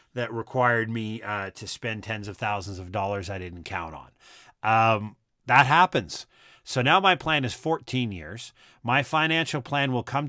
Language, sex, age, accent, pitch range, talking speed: English, male, 40-59, American, 115-150 Hz, 175 wpm